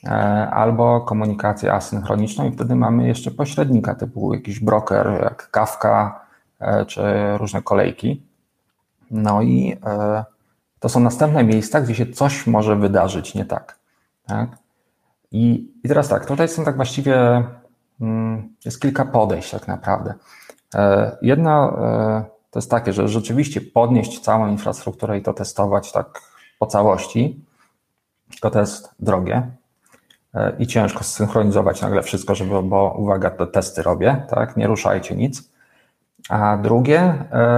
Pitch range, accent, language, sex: 105-120 Hz, native, Polish, male